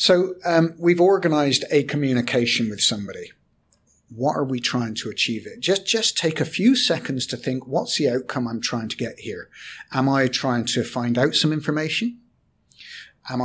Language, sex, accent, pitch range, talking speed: English, male, British, 125-155 Hz, 180 wpm